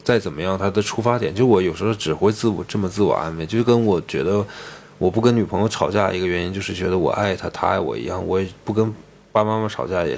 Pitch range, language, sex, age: 90-110 Hz, Chinese, male, 20-39